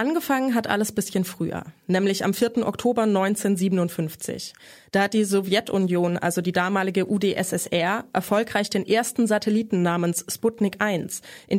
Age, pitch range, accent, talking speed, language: 20-39, 185-220 Hz, German, 140 wpm, German